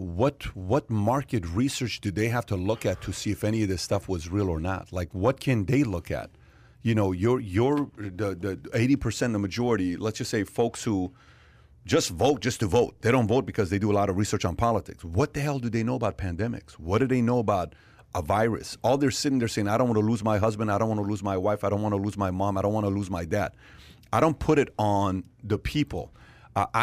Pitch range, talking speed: 100-120 Hz, 255 wpm